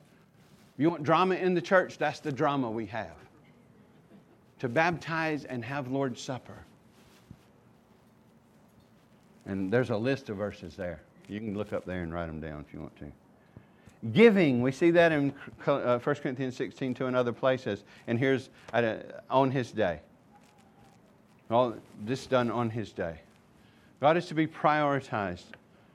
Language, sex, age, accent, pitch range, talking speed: English, male, 50-69, American, 125-170 Hz, 150 wpm